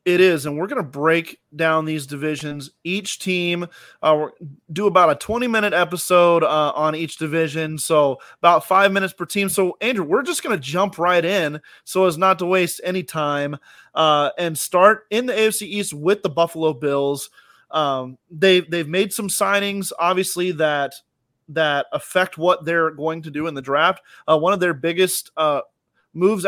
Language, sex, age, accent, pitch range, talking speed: English, male, 20-39, American, 155-190 Hz, 185 wpm